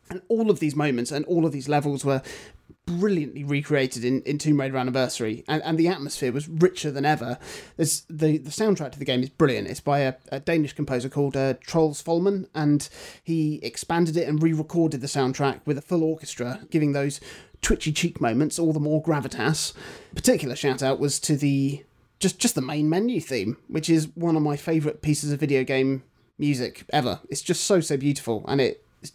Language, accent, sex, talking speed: English, British, male, 205 wpm